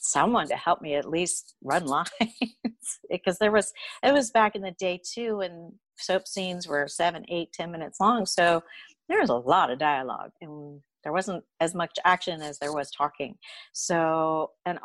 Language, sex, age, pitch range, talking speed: English, female, 50-69, 155-205 Hz, 185 wpm